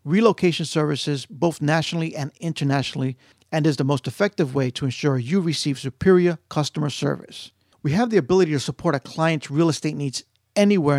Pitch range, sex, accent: 140-165 Hz, male, American